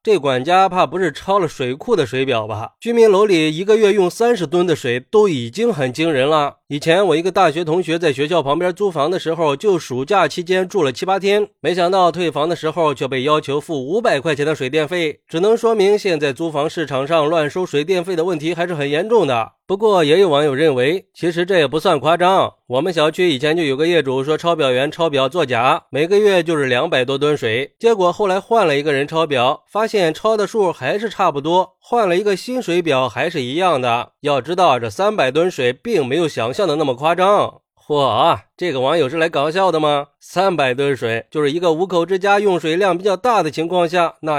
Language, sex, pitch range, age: Chinese, male, 145-200 Hz, 20-39